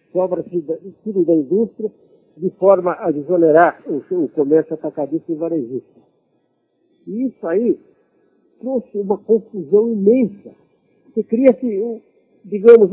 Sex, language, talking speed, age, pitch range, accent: male, Portuguese, 110 wpm, 60-79, 185-245 Hz, Brazilian